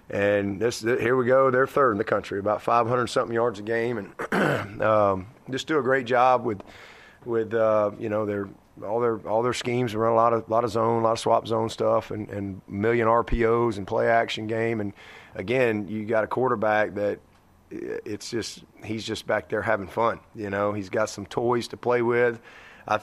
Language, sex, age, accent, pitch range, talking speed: English, male, 30-49, American, 105-120 Hz, 210 wpm